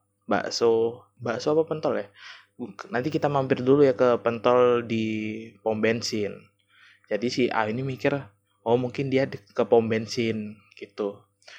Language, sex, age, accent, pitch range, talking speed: Indonesian, male, 20-39, native, 110-130 Hz, 145 wpm